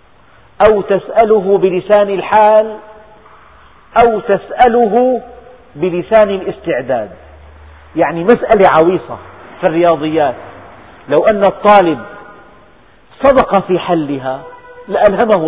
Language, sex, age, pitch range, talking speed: Arabic, male, 40-59, 155-210 Hz, 80 wpm